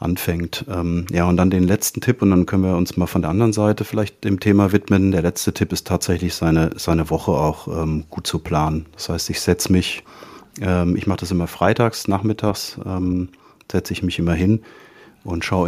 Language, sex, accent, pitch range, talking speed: German, male, German, 85-105 Hz, 210 wpm